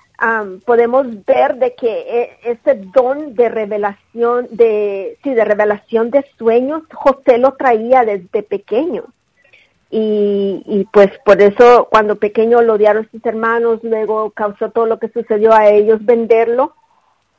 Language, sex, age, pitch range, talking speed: English, female, 40-59, 205-240 Hz, 140 wpm